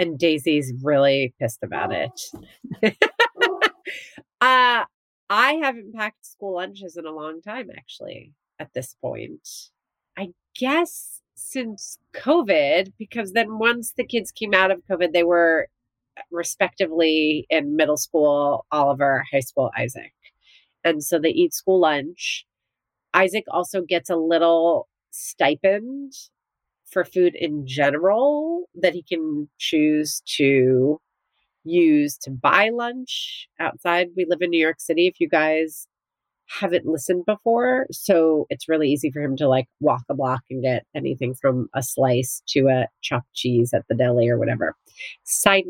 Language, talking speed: English, 140 wpm